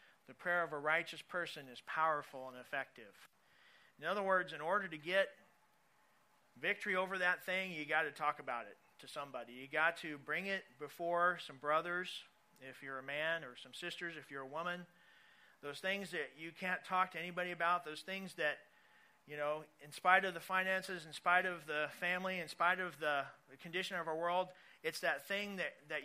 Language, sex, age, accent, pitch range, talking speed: English, male, 40-59, American, 150-180 Hz, 195 wpm